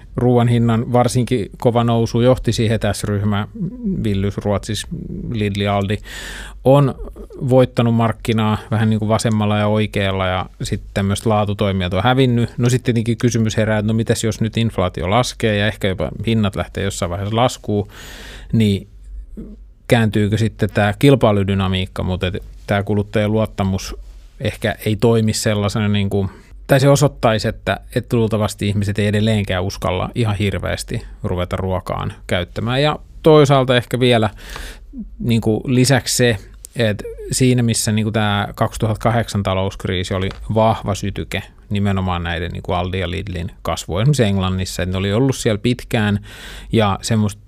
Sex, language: male, Finnish